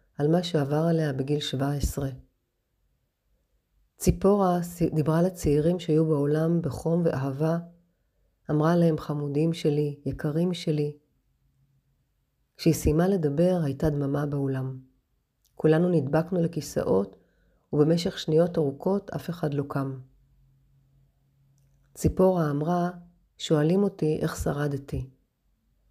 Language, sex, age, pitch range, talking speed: Hebrew, female, 40-59, 140-170 Hz, 95 wpm